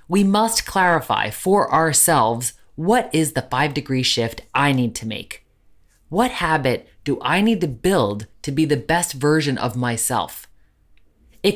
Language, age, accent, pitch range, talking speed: English, 20-39, American, 125-175 Hz, 155 wpm